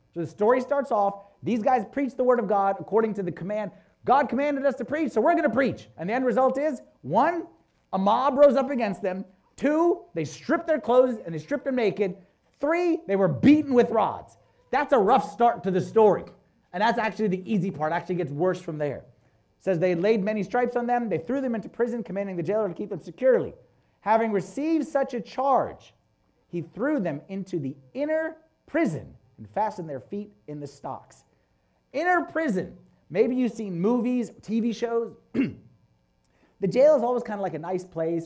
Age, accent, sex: 30-49, American, male